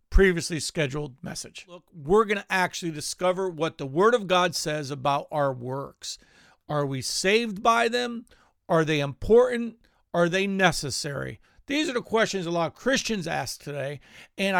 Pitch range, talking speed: 150-205 Hz, 165 wpm